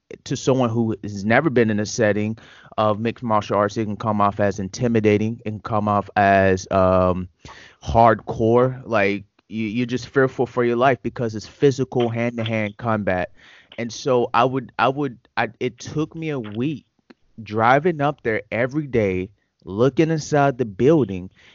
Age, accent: 30-49, American